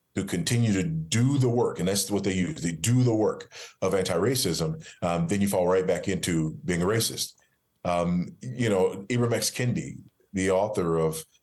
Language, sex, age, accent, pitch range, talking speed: English, male, 40-59, American, 90-120 Hz, 190 wpm